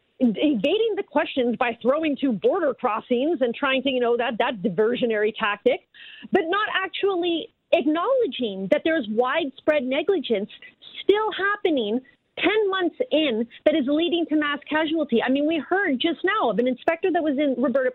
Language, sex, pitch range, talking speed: English, female, 245-330 Hz, 165 wpm